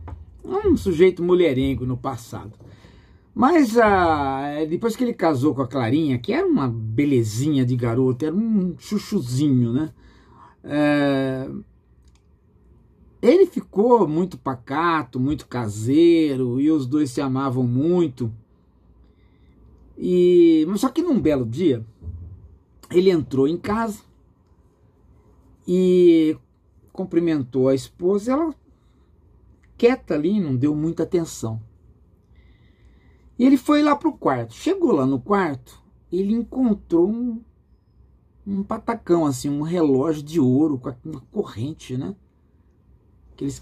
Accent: Brazilian